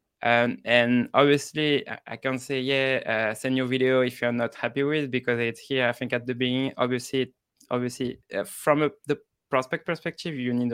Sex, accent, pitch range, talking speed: male, French, 120-140 Hz, 195 wpm